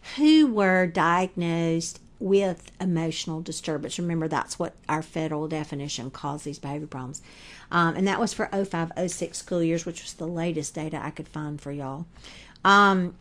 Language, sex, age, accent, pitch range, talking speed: English, female, 50-69, American, 160-190 Hz, 160 wpm